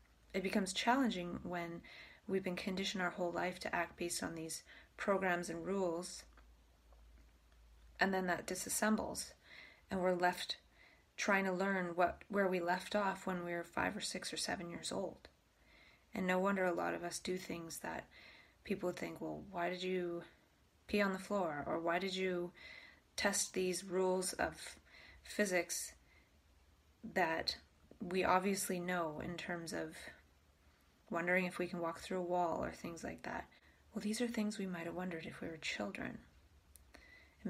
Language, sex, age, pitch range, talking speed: English, female, 20-39, 130-190 Hz, 165 wpm